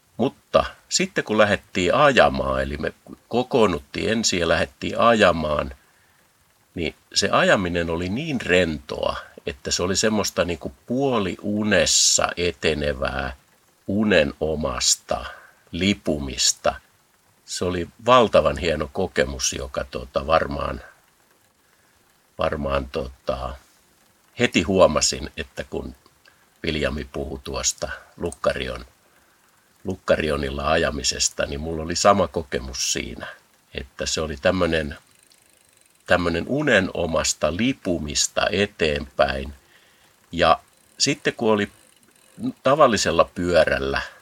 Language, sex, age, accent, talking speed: Finnish, male, 50-69, native, 90 wpm